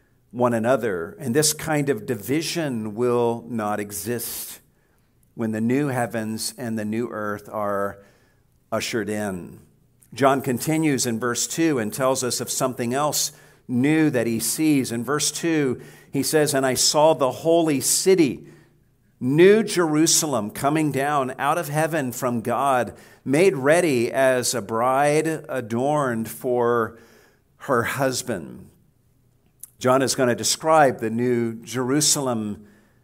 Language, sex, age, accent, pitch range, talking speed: English, male, 50-69, American, 115-145 Hz, 135 wpm